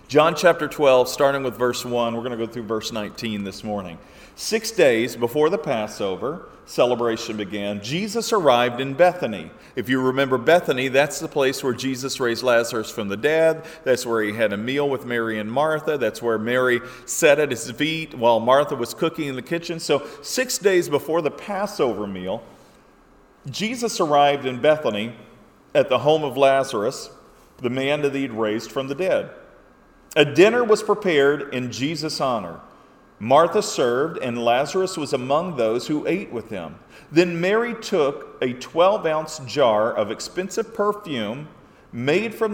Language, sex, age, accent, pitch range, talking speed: English, male, 40-59, American, 125-170 Hz, 165 wpm